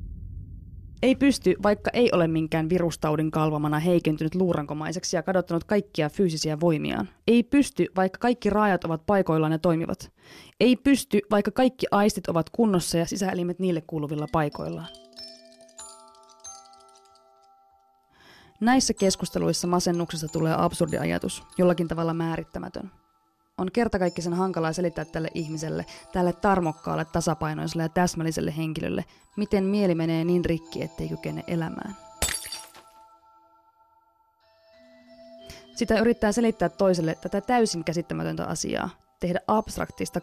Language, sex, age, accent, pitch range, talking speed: Finnish, female, 20-39, native, 160-205 Hz, 110 wpm